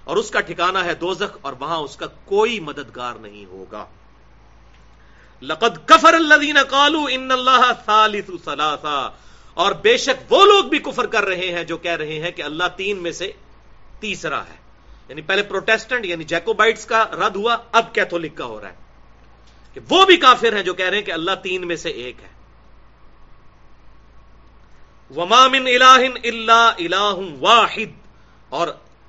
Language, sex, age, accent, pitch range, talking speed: English, male, 40-59, Indian, 155-230 Hz, 155 wpm